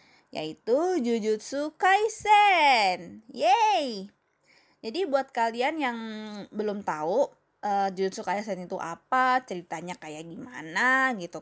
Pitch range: 180-235 Hz